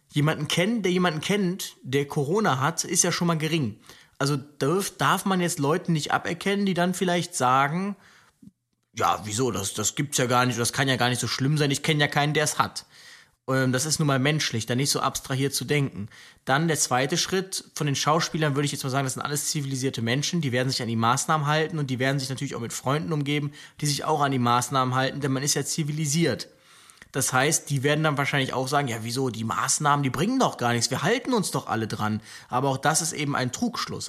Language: German